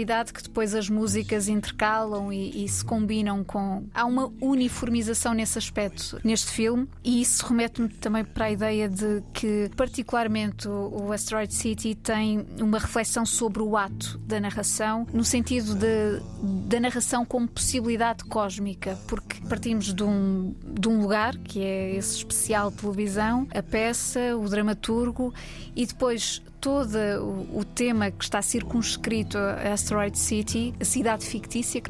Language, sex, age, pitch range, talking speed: Portuguese, female, 20-39, 205-230 Hz, 140 wpm